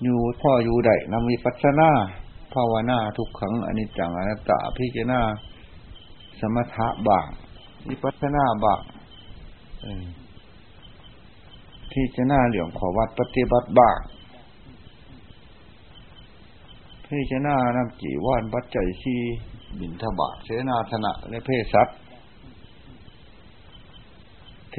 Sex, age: male, 60-79